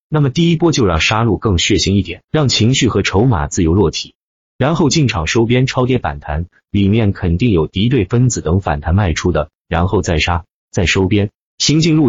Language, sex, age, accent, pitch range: Chinese, male, 30-49, native, 90-130 Hz